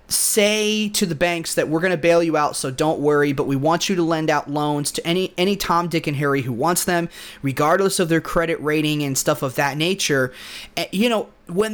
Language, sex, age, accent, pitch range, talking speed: English, male, 30-49, American, 150-190 Hz, 235 wpm